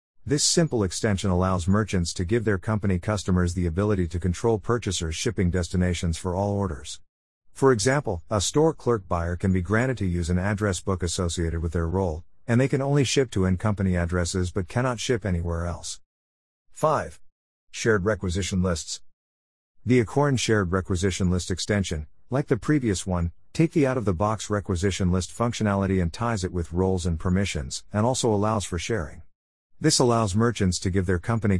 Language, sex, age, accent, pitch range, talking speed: English, male, 50-69, American, 90-110 Hz, 170 wpm